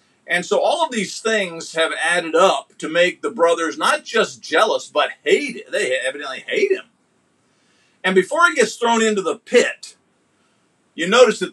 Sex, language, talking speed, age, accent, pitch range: male, English, 170 wpm, 50-69, American, 165-230 Hz